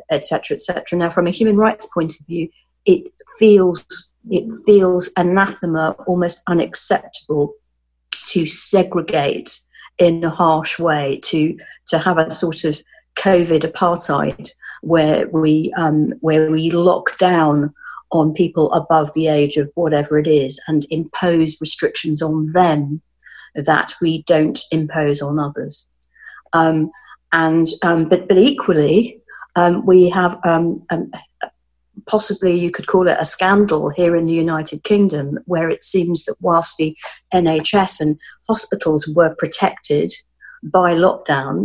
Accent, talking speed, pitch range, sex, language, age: British, 135 wpm, 155-180 Hz, female, English, 40-59